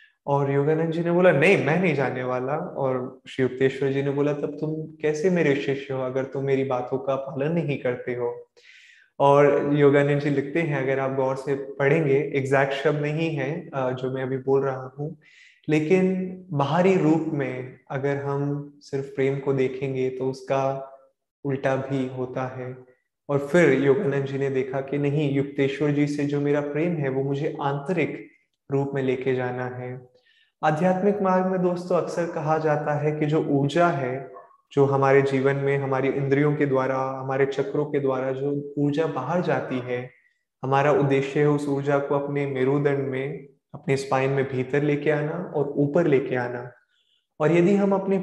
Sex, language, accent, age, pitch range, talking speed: male, Hindi, native, 20-39, 135-150 Hz, 180 wpm